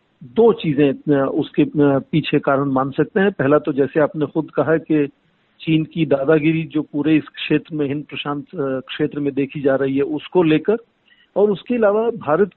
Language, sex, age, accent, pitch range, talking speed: Hindi, male, 50-69, native, 145-175 Hz, 175 wpm